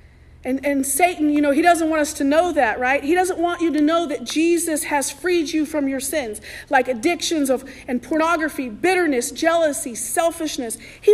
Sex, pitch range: female, 265-335 Hz